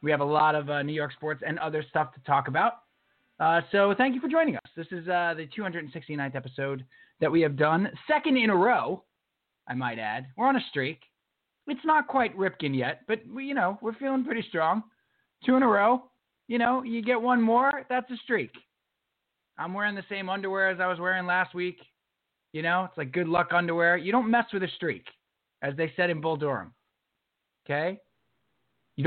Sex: male